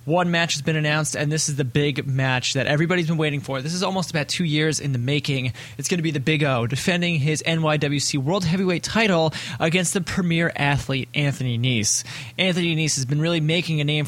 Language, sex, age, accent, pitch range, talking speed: English, male, 20-39, American, 130-165 Hz, 220 wpm